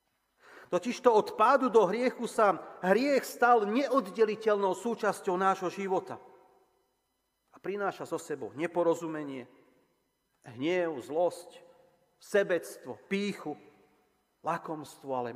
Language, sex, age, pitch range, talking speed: Slovak, male, 40-59, 145-215 Hz, 90 wpm